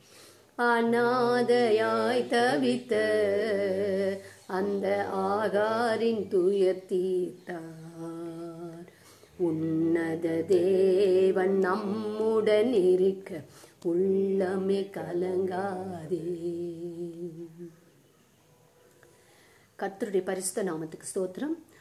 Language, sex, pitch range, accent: Tamil, female, 180-220 Hz, native